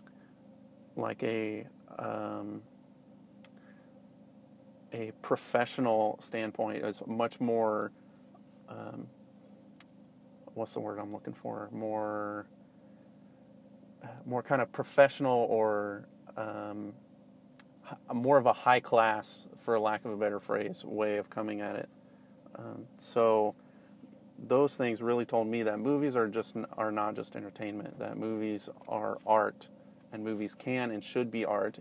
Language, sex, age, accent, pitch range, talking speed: English, male, 30-49, American, 105-120 Hz, 125 wpm